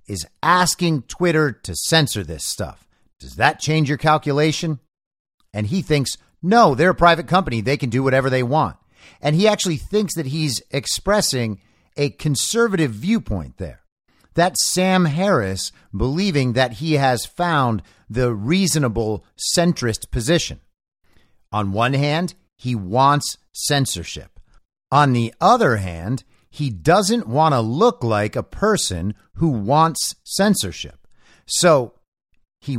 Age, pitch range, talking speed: 50-69, 110-170 Hz, 130 wpm